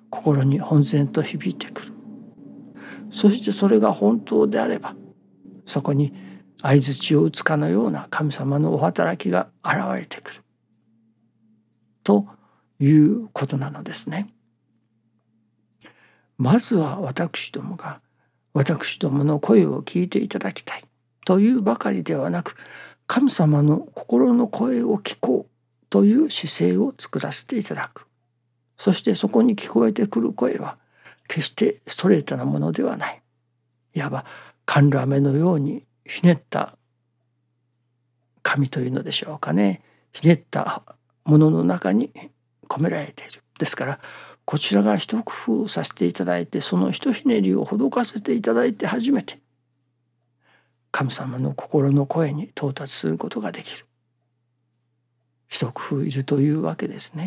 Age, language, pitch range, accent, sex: 60-79, Japanese, 120-180 Hz, native, male